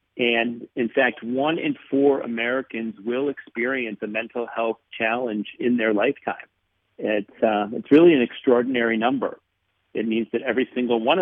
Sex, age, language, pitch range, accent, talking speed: male, 50-69, English, 105-120 Hz, American, 155 wpm